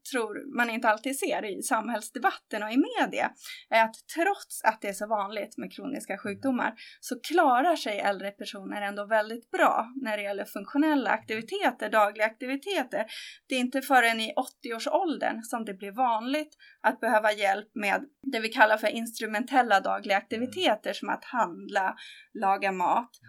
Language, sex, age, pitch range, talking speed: Swedish, female, 30-49, 215-285 Hz, 160 wpm